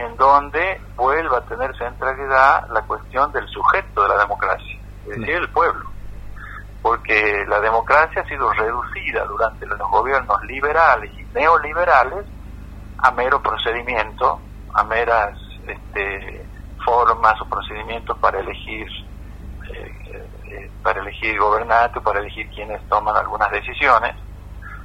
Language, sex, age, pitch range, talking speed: Spanish, male, 50-69, 100-115 Hz, 125 wpm